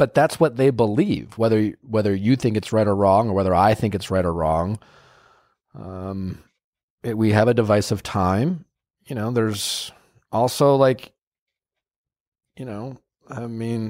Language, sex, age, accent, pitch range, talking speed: English, male, 30-49, American, 105-125 Hz, 160 wpm